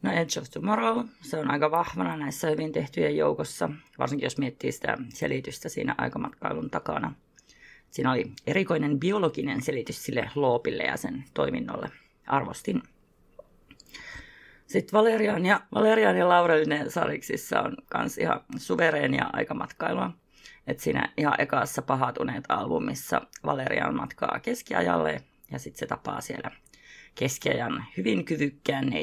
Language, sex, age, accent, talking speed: Finnish, female, 30-49, native, 125 wpm